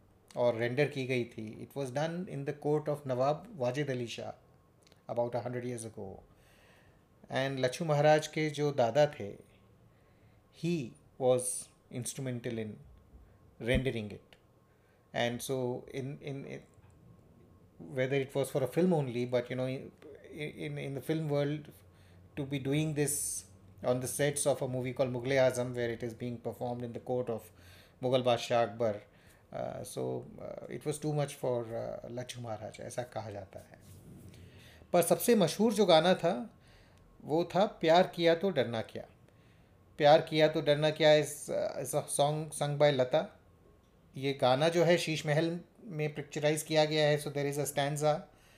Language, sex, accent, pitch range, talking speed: Hindi, male, native, 120-150 Hz, 155 wpm